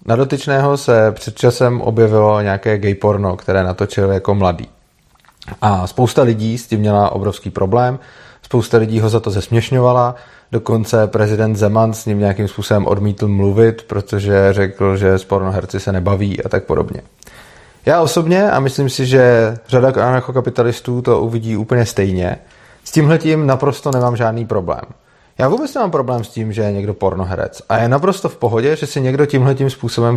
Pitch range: 110-145 Hz